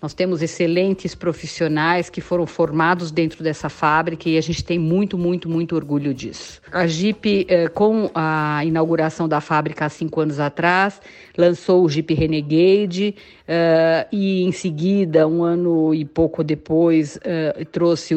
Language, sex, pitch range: Portuguese, female, 155-180 Hz